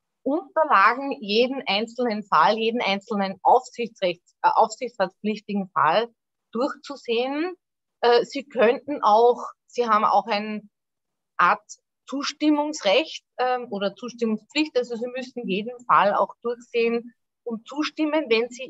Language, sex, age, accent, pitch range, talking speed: English, female, 30-49, Austrian, 215-255 Hz, 110 wpm